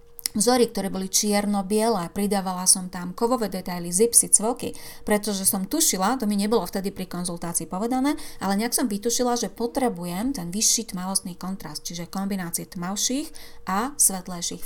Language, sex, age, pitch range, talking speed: Slovak, female, 30-49, 190-235 Hz, 145 wpm